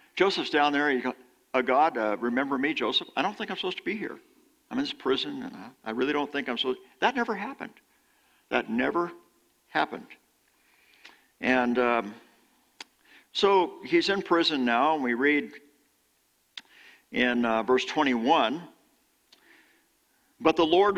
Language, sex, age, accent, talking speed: English, male, 60-79, American, 150 wpm